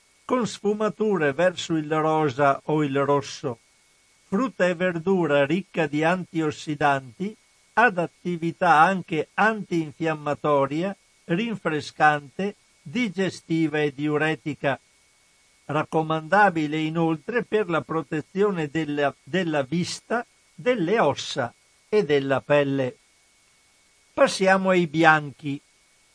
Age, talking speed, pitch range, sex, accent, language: 50-69, 85 wpm, 150-195 Hz, male, native, Italian